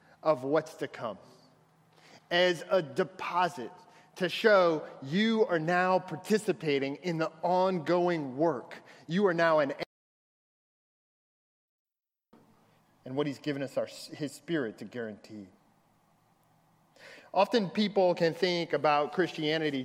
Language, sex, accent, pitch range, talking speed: English, male, American, 145-175 Hz, 110 wpm